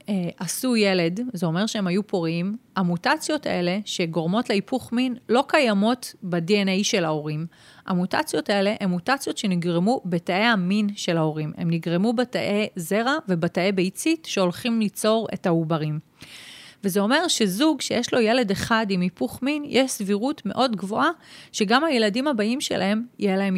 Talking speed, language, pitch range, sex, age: 140 wpm, Hebrew, 185-240 Hz, female, 30-49